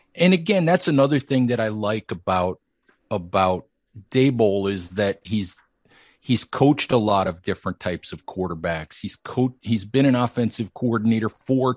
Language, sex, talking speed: English, male, 160 wpm